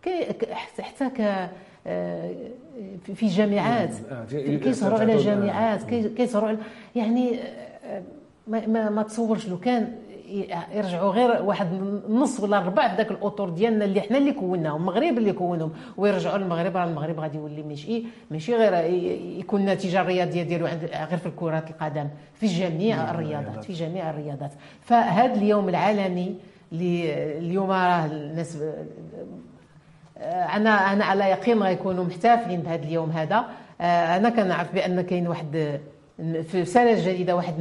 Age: 50-69